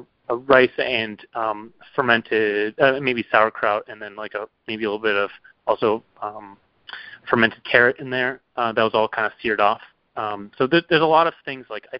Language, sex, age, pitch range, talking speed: English, male, 30-49, 105-125 Hz, 205 wpm